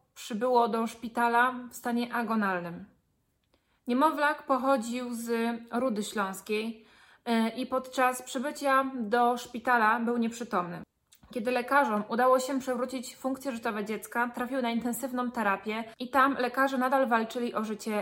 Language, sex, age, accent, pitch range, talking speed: Polish, female, 20-39, native, 215-255 Hz, 125 wpm